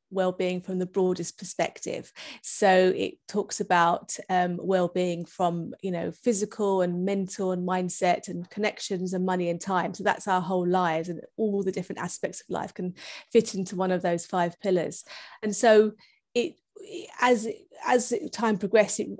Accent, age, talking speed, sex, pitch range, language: British, 30-49, 165 wpm, female, 180-205 Hz, English